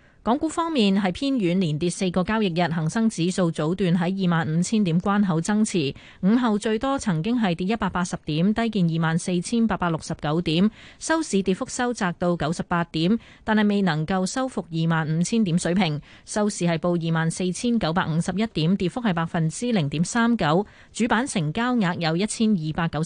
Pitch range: 165-225 Hz